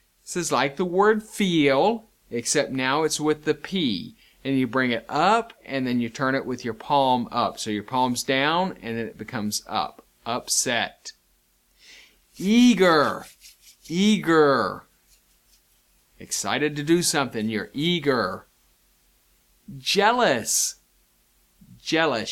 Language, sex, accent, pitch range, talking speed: English, male, American, 110-150 Hz, 125 wpm